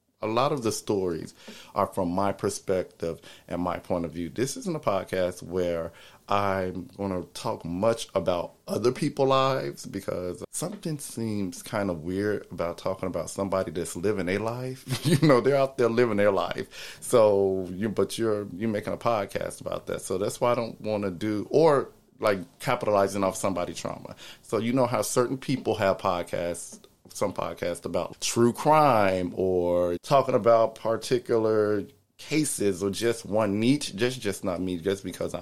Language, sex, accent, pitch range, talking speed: English, male, American, 90-115 Hz, 175 wpm